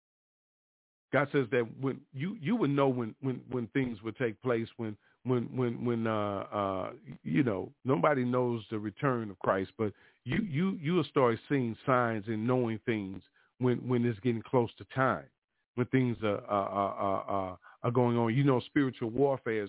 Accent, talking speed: American, 185 wpm